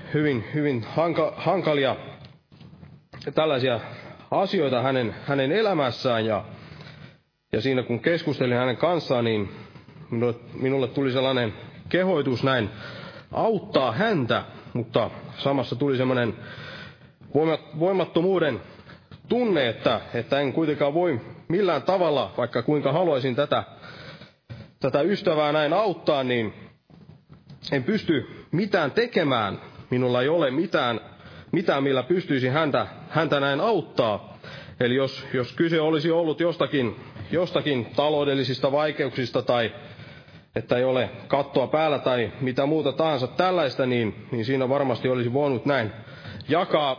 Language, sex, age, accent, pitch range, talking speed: Finnish, male, 30-49, native, 125-155 Hz, 115 wpm